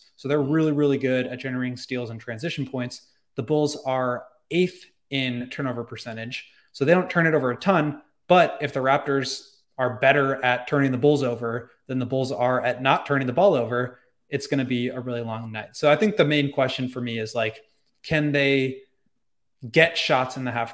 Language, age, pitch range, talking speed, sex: English, 20-39, 120-140 Hz, 205 wpm, male